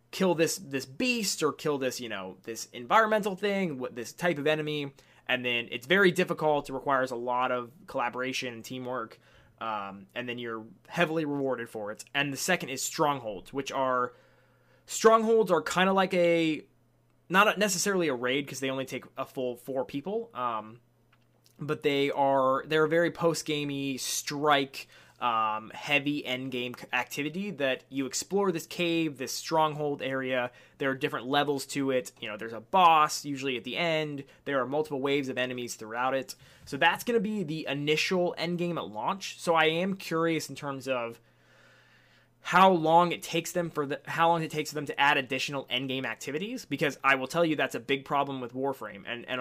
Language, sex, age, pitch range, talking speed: English, male, 20-39, 125-160 Hz, 195 wpm